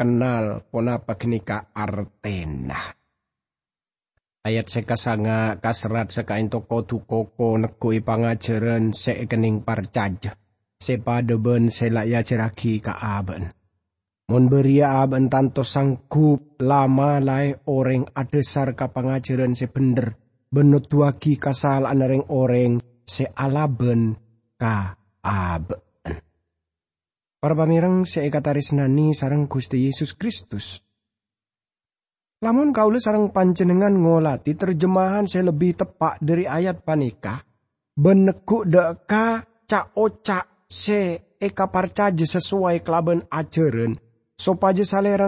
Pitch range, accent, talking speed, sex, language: 115-180 Hz, Indonesian, 100 wpm, male, English